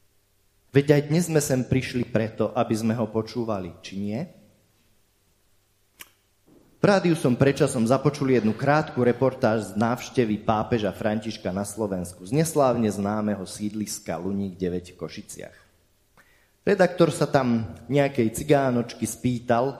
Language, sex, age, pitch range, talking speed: Slovak, male, 30-49, 100-135 Hz, 120 wpm